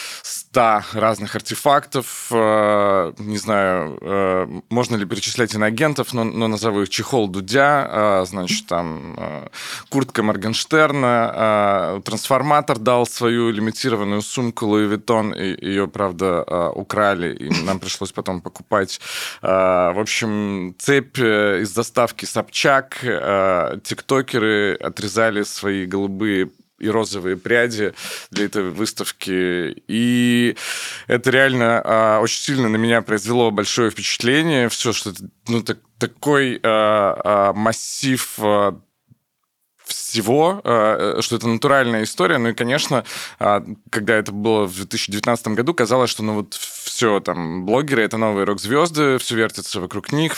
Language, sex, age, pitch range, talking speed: Russian, male, 20-39, 100-120 Hz, 125 wpm